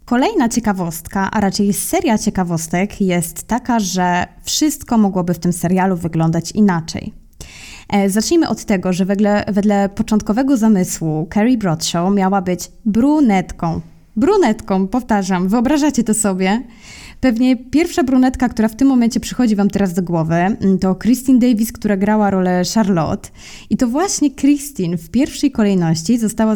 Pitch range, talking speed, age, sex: 185-225 Hz, 140 wpm, 20-39, female